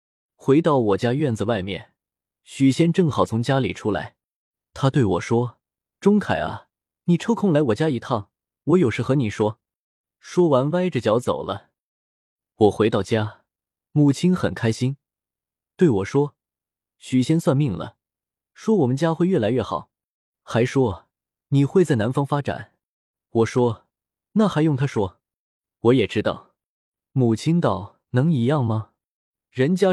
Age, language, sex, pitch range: 20-39, Chinese, male, 110-155 Hz